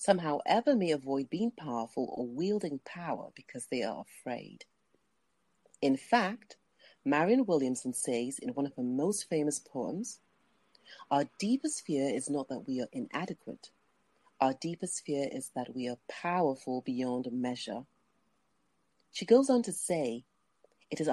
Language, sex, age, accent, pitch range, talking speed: English, female, 40-59, British, 130-190 Hz, 145 wpm